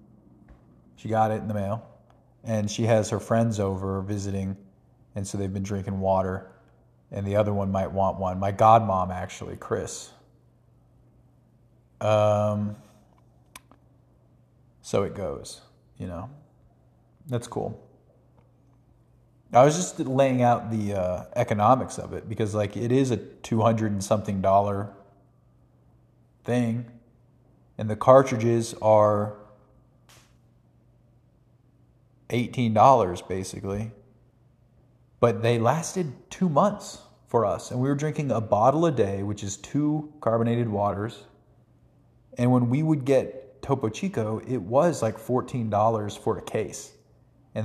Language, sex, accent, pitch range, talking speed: English, male, American, 105-125 Hz, 125 wpm